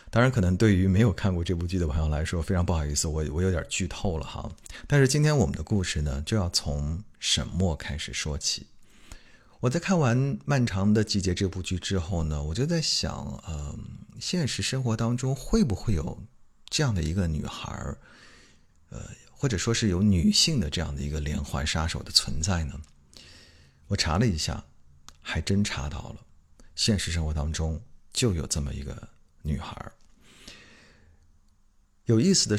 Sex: male